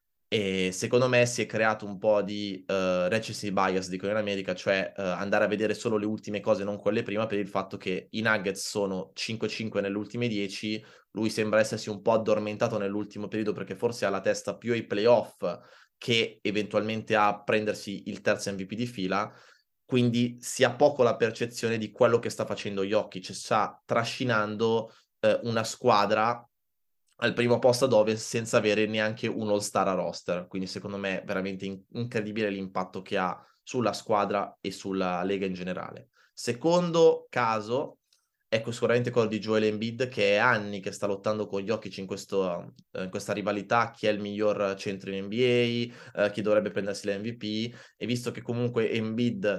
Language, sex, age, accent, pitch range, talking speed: Italian, male, 20-39, native, 100-115 Hz, 180 wpm